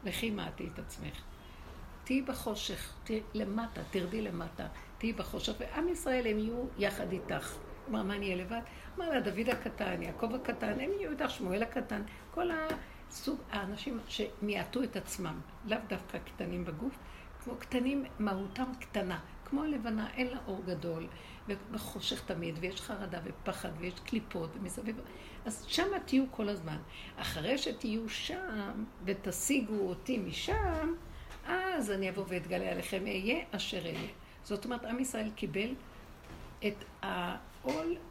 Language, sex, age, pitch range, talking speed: Hebrew, female, 60-79, 190-255 Hz, 140 wpm